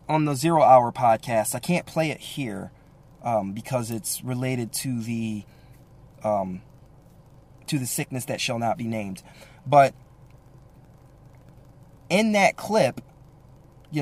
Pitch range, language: 130-155 Hz, English